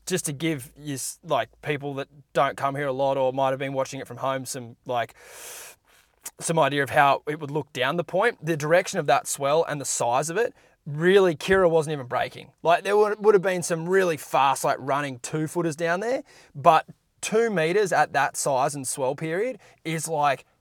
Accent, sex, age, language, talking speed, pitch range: Australian, male, 20-39, English, 215 wpm, 135-175 Hz